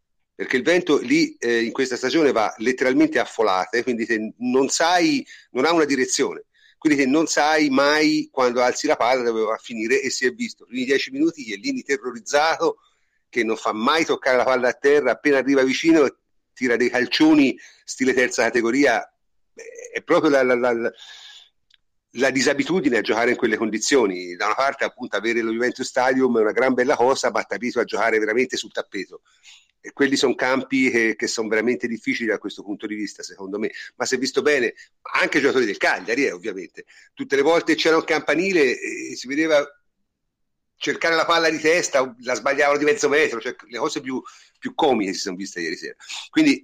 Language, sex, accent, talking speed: Italian, male, native, 200 wpm